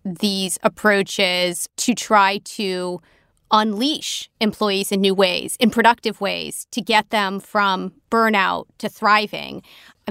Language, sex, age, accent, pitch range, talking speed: English, female, 30-49, American, 185-205 Hz, 125 wpm